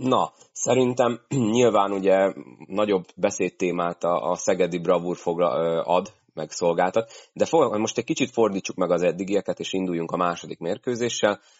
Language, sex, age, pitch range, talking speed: Hungarian, male, 30-49, 85-105 Hz, 135 wpm